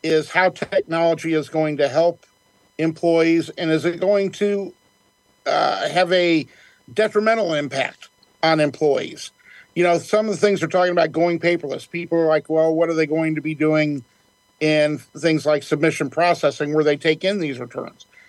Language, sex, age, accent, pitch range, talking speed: English, male, 50-69, American, 150-170 Hz, 175 wpm